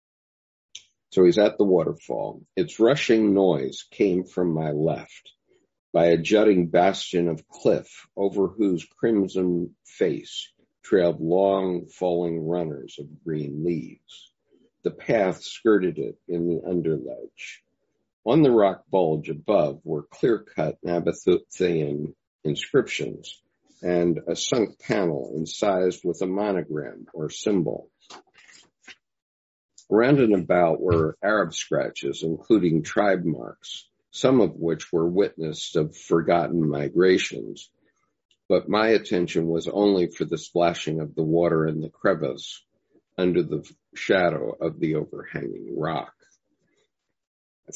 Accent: American